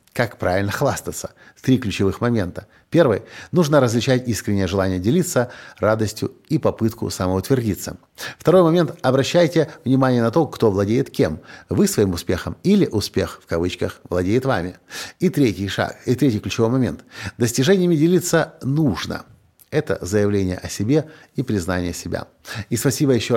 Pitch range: 95-135 Hz